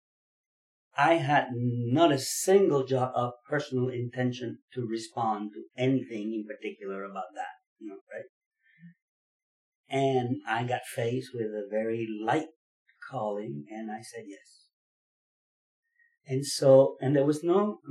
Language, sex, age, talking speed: English, male, 40-59, 130 wpm